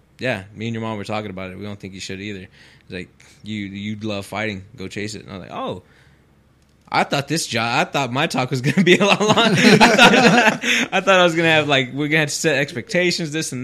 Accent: American